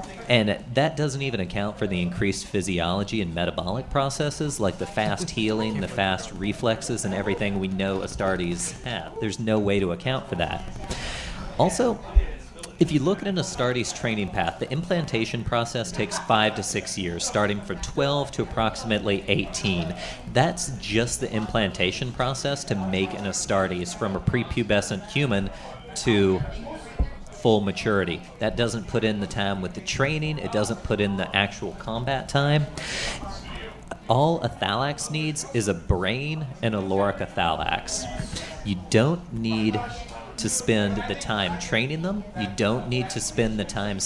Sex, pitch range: male, 100-135 Hz